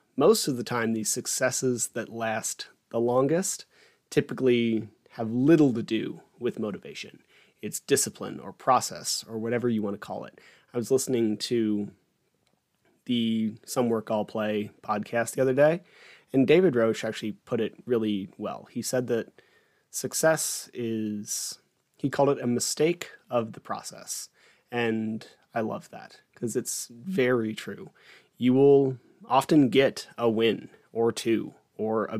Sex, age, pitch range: male, 30-49, 110-130 Hz